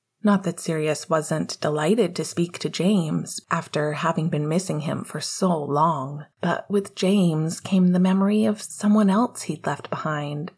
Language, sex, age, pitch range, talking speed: English, female, 30-49, 165-210 Hz, 165 wpm